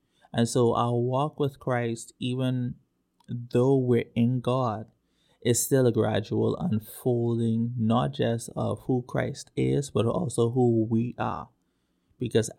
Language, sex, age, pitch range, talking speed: English, male, 20-39, 115-130 Hz, 135 wpm